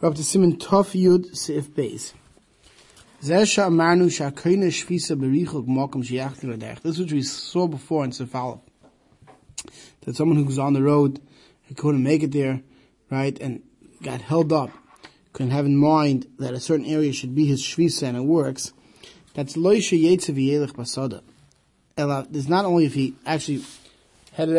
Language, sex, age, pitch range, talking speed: English, male, 20-39, 135-175 Hz, 115 wpm